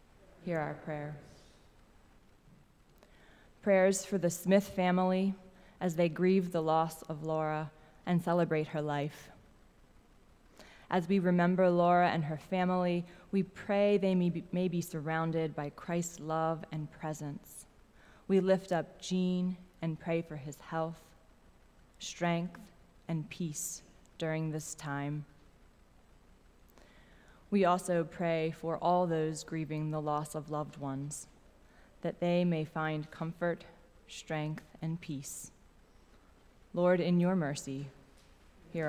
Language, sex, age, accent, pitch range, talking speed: English, female, 20-39, American, 155-180 Hz, 120 wpm